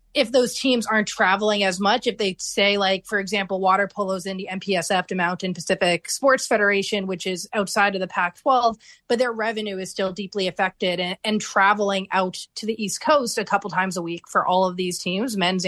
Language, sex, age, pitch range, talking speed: English, female, 30-49, 190-220 Hz, 210 wpm